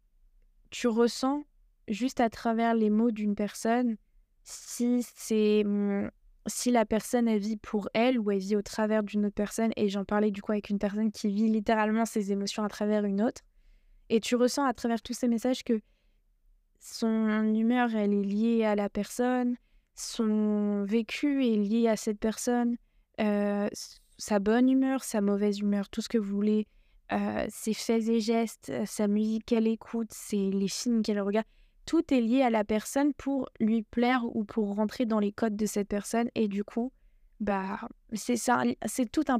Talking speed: 185 wpm